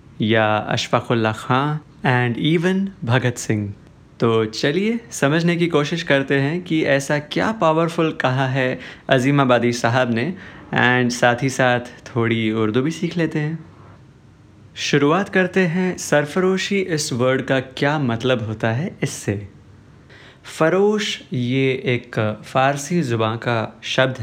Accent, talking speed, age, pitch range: native, 130 wpm, 30-49, 120-155 Hz